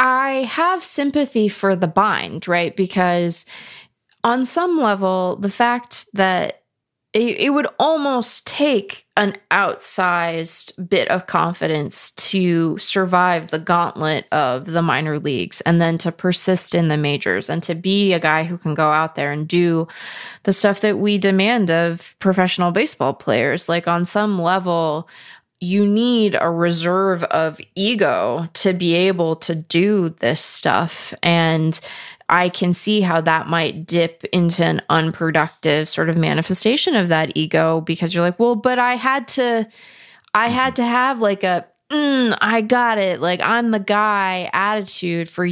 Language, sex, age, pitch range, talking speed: English, female, 20-39, 170-215 Hz, 155 wpm